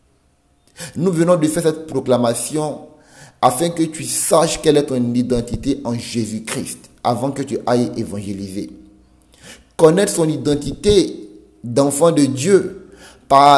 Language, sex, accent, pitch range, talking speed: French, male, French, 120-165 Hz, 130 wpm